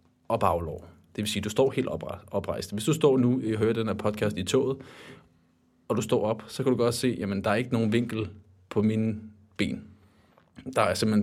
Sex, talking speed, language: male, 225 wpm, Danish